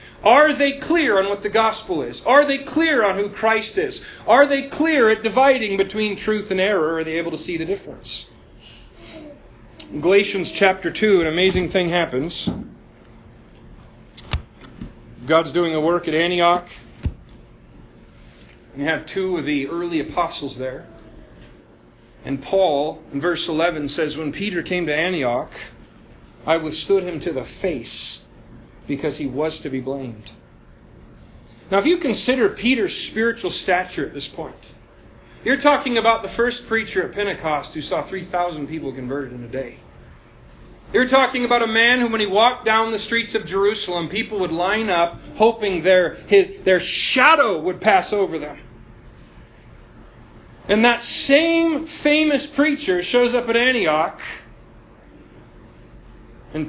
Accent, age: American, 40-59